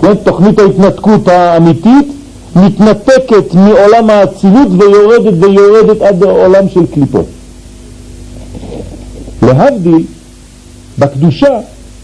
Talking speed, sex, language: 70 wpm, male, French